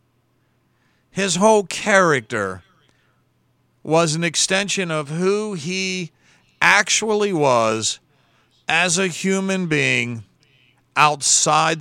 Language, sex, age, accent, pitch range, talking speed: English, male, 50-69, American, 130-185 Hz, 80 wpm